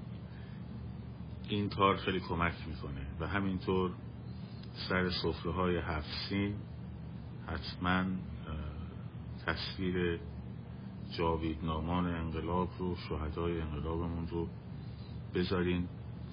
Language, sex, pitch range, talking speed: Persian, male, 80-95 Hz, 75 wpm